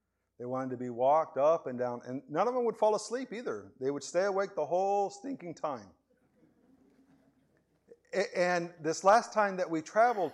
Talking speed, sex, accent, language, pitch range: 180 wpm, male, American, English, 115-180 Hz